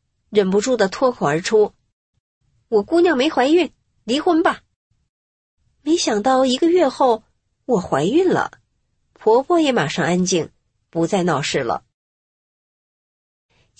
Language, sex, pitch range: Chinese, female, 180-270 Hz